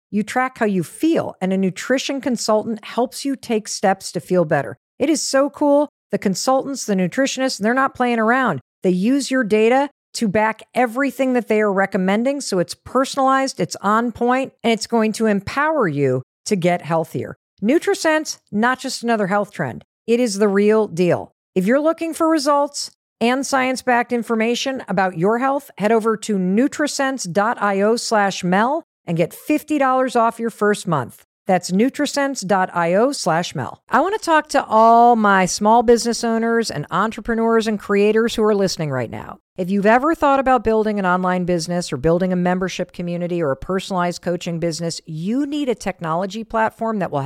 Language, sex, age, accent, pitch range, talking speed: English, female, 50-69, American, 185-255 Hz, 175 wpm